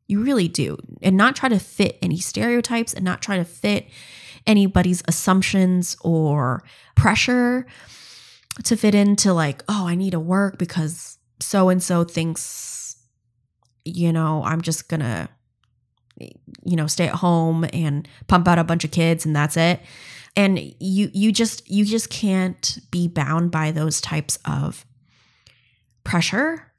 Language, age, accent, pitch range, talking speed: English, 20-39, American, 155-195 Hz, 145 wpm